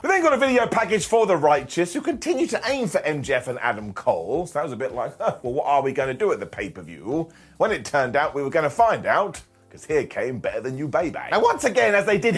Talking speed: 285 wpm